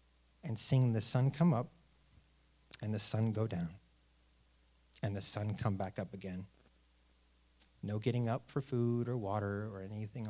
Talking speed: 155 wpm